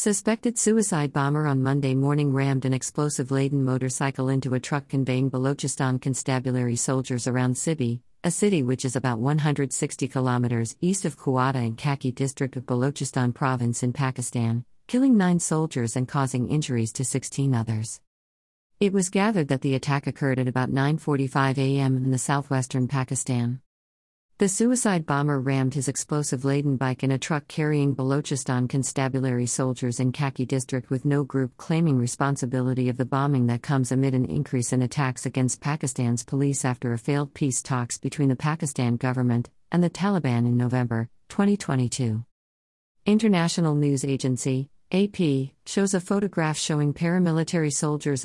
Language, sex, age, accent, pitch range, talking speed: English, female, 50-69, American, 130-150 Hz, 150 wpm